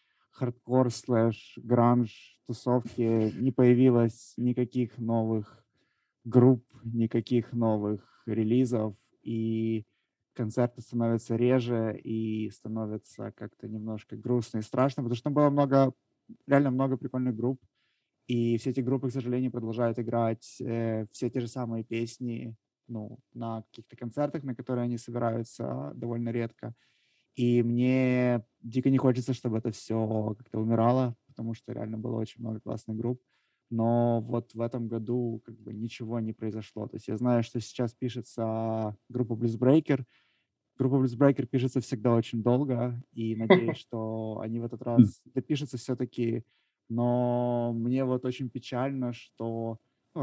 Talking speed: 135 wpm